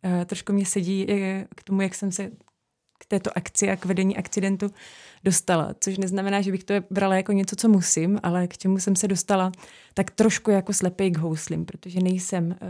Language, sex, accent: Czech, female, native